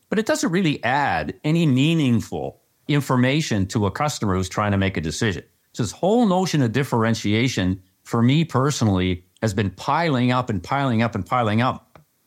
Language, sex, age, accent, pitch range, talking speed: English, male, 50-69, American, 110-165 Hz, 175 wpm